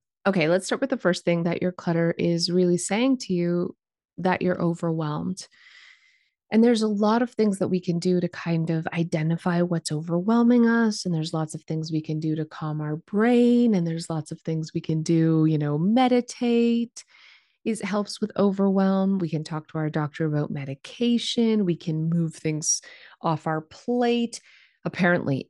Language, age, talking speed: English, 30-49, 185 wpm